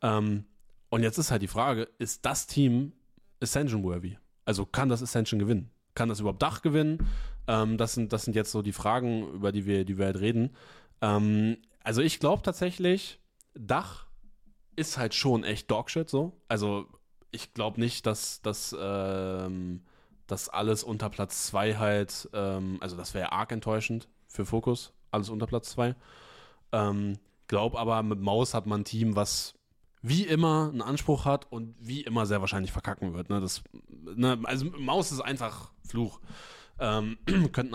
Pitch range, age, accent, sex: 105-125 Hz, 10-29, German, male